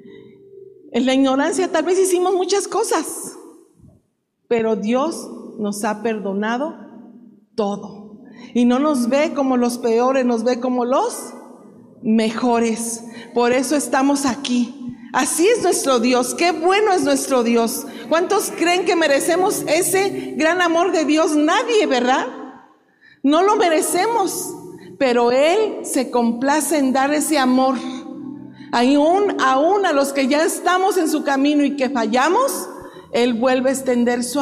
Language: Spanish